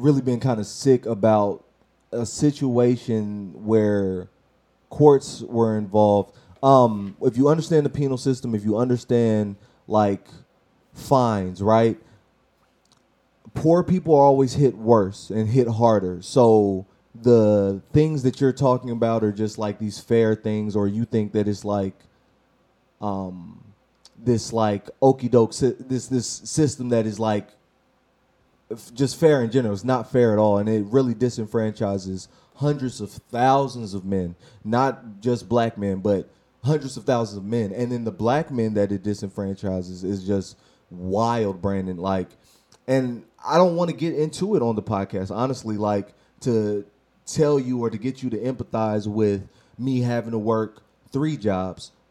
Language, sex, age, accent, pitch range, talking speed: English, male, 20-39, American, 105-130 Hz, 155 wpm